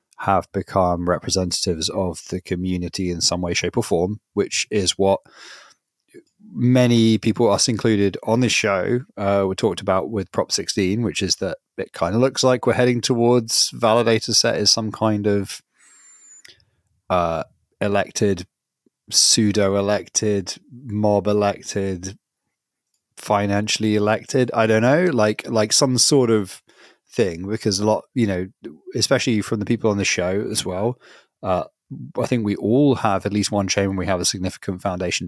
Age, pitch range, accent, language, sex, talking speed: 30-49, 95-115 Hz, British, English, male, 160 wpm